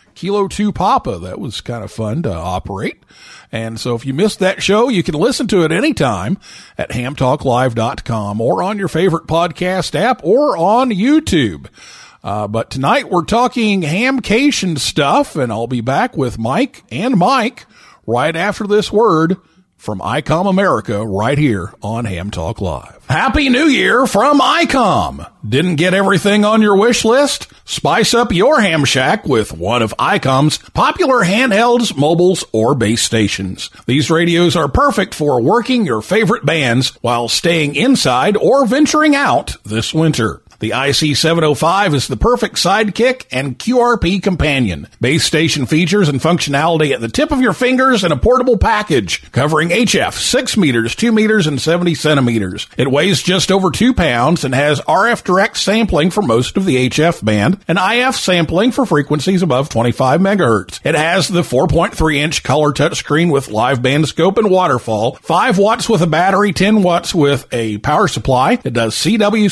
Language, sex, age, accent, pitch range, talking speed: English, male, 50-69, American, 125-205 Hz, 165 wpm